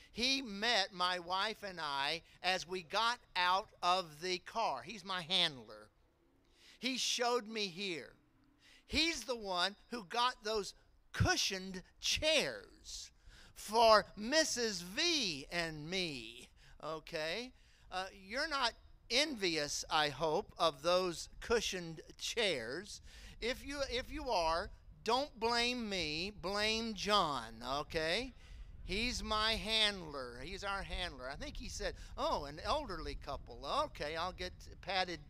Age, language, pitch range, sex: 50-69, English, 170-245 Hz, male